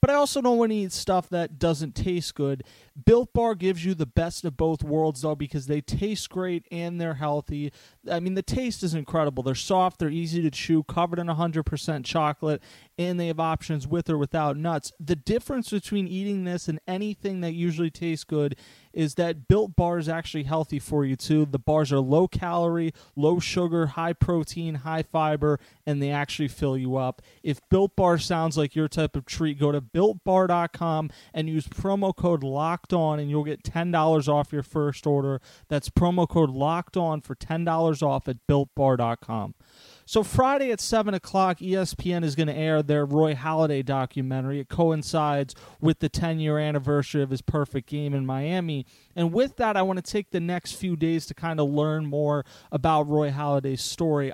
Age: 30-49